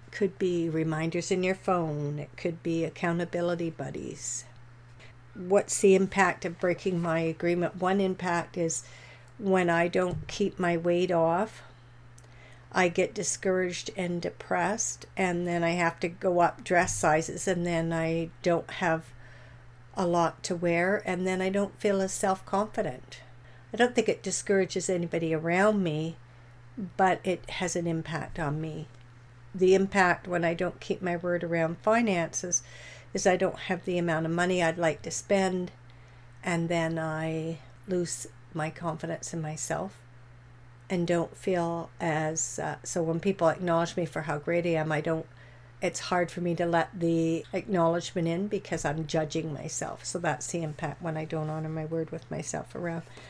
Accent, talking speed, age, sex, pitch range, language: American, 160 wpm, 60-79, female, 155-180 Hz, English